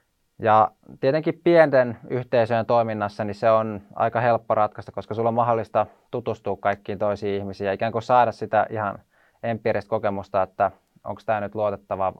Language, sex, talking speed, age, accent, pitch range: Finnish, male, 155 wpm, 20-39, native, 105-120 Hz